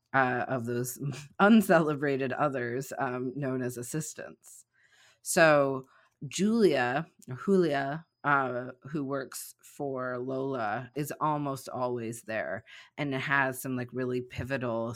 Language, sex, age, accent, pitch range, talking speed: English, female, 30-49, American, 125-150 Hz, 110 wpm